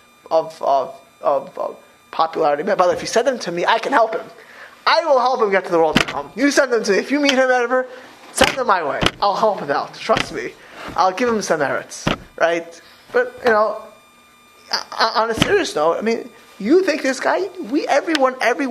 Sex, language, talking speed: male, English, 220 wpm